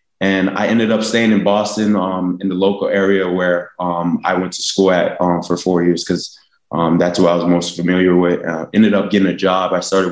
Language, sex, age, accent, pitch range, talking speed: German, male, 20-39, American, 90-105 Hz, 235 wpm